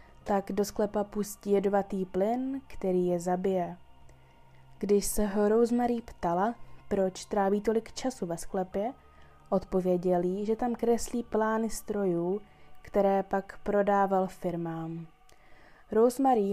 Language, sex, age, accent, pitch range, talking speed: Czech, female, 20-39, native, 180-215 Hz, 115 wpm